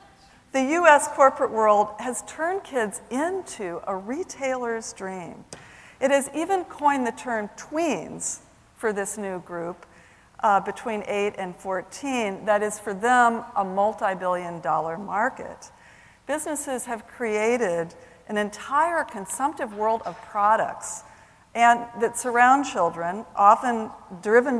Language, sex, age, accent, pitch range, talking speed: English, female, 50-69, American, 180-240 Hz, 120 wpm